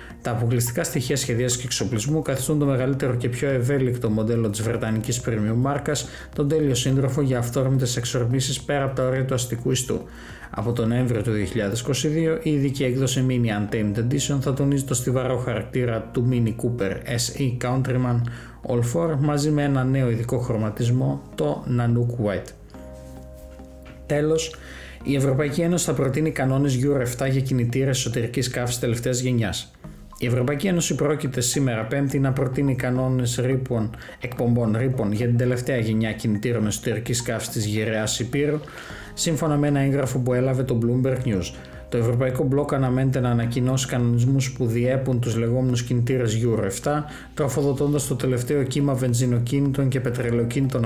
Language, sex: Greek, male